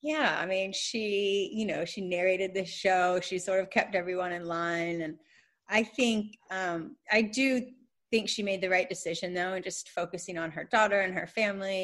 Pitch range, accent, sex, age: 185-235 Hz, American, female, 30-49